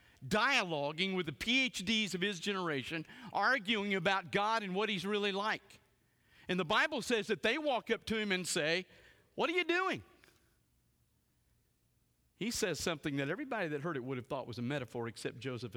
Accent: American